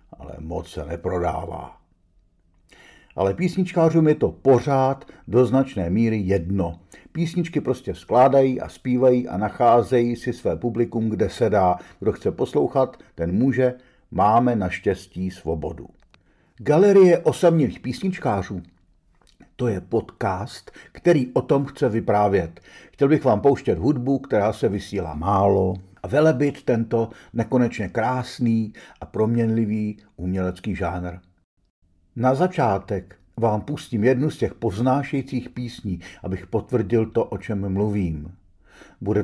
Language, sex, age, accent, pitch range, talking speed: Czech, male, 50-69, native, 95-125 Hz, 120 wpm